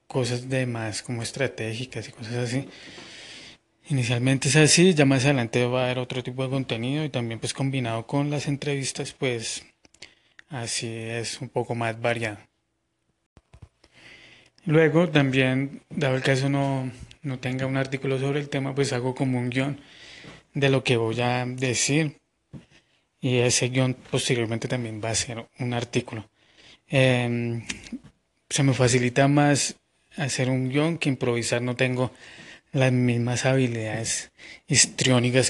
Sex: male